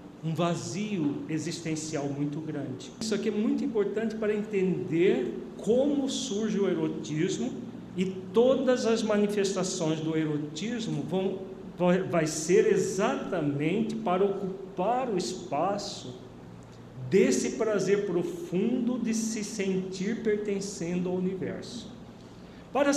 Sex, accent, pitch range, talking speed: male, Brazilian, 160-220 Hz, 100 wpm